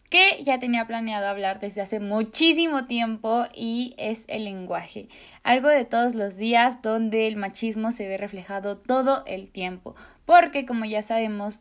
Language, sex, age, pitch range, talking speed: Spanish, female, 20-39, 205-275 Hz, 160 wpm